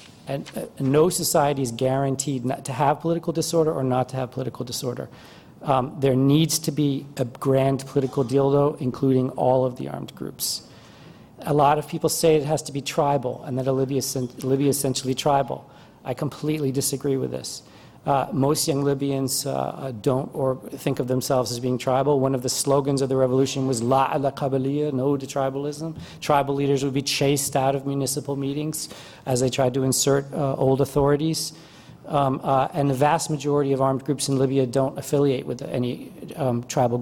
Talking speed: 190 wpm